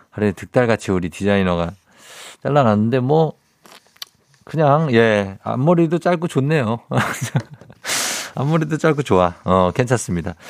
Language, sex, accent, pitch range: Korean, male, native, 100-140 Hz